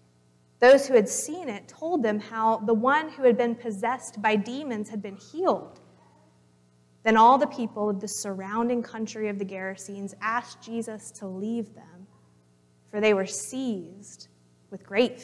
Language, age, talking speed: English, 20-39, 160 wpm